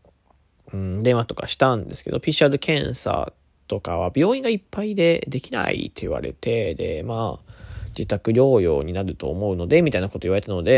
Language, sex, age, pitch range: Japanese, male, 20-39, 95-140 Hz